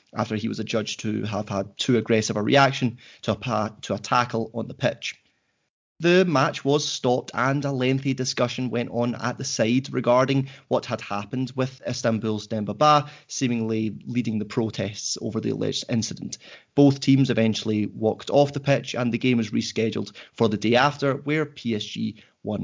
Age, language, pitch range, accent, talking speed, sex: 20-39, English, 110-135 Hz, British, 170 wpm, male